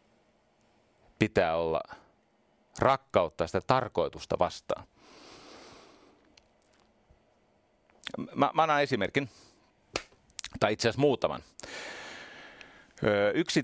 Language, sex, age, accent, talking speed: Finnish, male, 40-59, native, 60 wpm